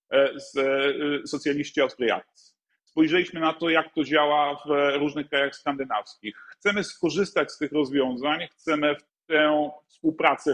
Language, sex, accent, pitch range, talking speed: Polish, male, native, 140-180 Hz, 120 wpm